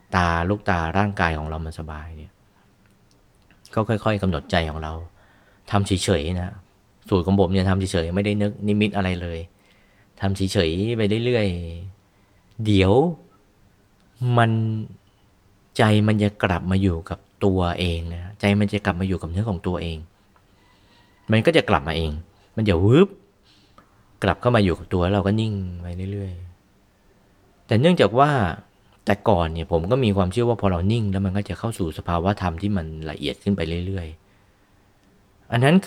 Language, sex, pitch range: Thai, male, 90-100 Hz